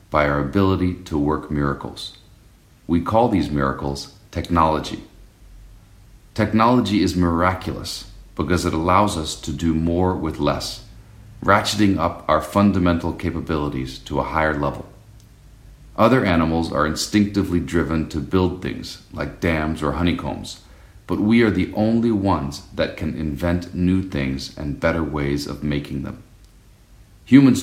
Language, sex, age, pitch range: Chinese, male, 40-59, 75-100 Hz